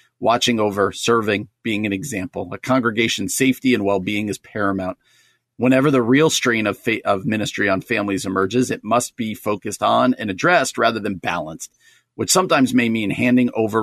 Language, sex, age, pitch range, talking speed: English, male, 40-59, 105-140 Hz, 170 wpm